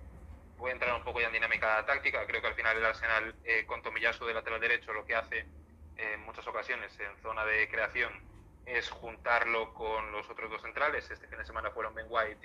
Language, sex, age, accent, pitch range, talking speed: Spanish, male, 20-39, Spanish, 85-130 Hz, 220 wpm